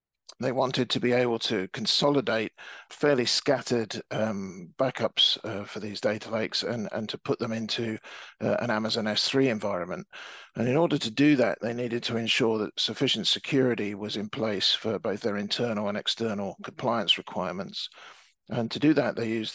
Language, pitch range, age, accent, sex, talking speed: English, 105-125 Hz, 50-69, British, male, 175 wpm